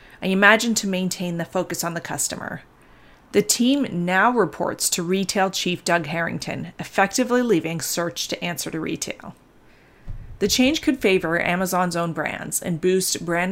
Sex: female